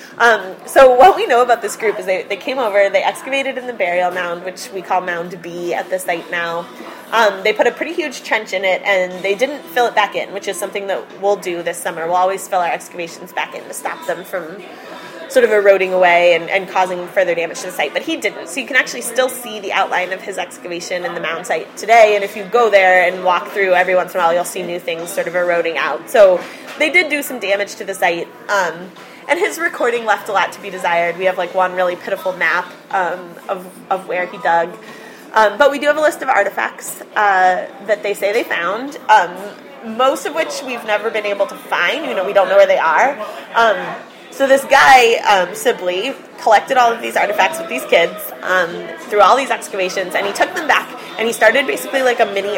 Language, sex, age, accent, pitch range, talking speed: English, female, 20-39, American, 180-245 Hz, 240 wpm